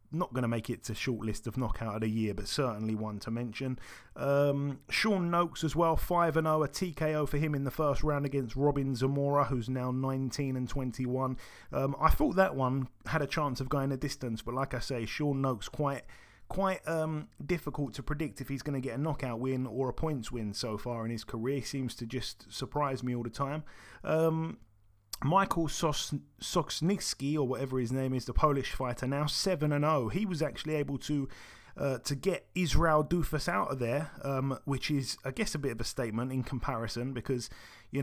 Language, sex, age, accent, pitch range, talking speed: English, male, 30-49, British, 125-150 Hz, 205 wpm